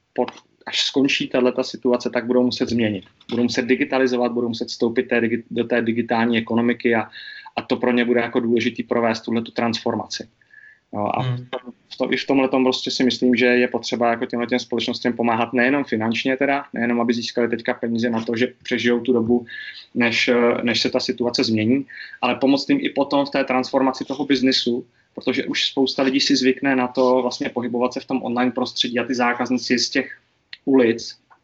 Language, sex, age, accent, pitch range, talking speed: Czech, male, 20-39, native, 115-130 Hz, 190 wpm